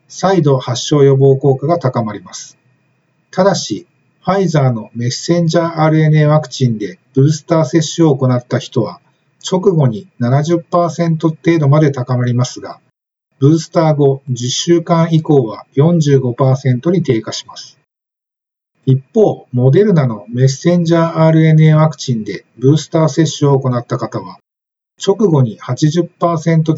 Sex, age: male, 50-69